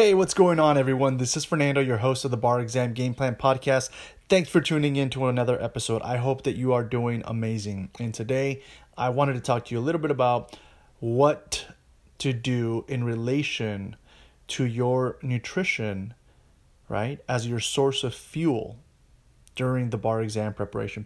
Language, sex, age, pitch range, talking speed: English, male, 30-49, 115-135 Hz, 175 wpm